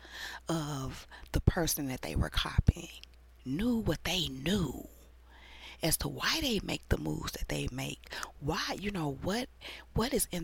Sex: female